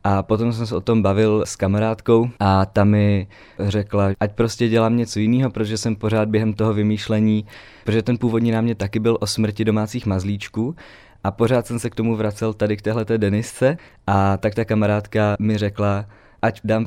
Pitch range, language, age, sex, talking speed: 105-115 Hz, Czech, 20-39, male, 190 wpm